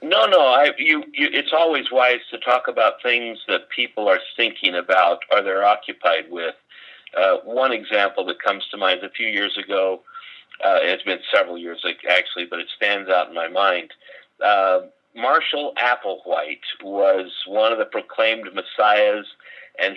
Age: 50-69